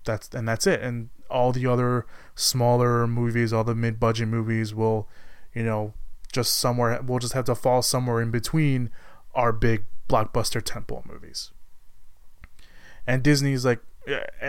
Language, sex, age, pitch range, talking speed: English, male, 20-39, 115-130 Hz, 145 wpm